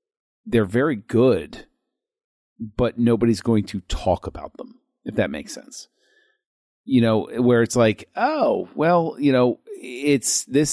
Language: English